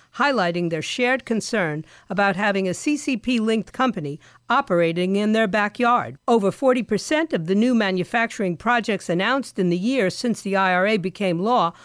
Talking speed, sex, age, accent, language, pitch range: 145 wpm, female, 50-69, American, English, 175-240 Hz